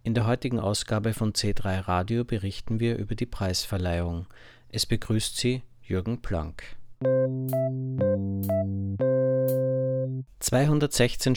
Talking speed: 95 wpm